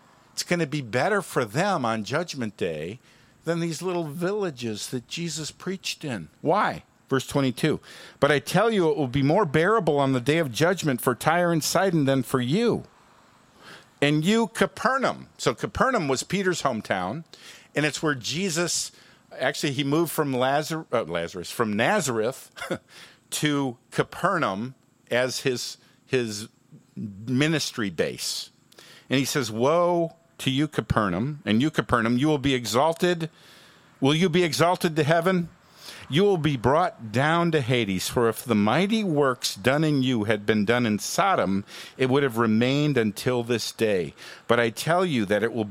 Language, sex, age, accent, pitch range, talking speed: English, male, 50-69, American, 120-160 Hz, 160 wpm